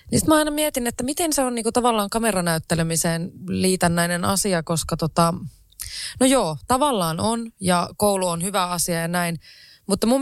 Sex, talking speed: female, 170 wpm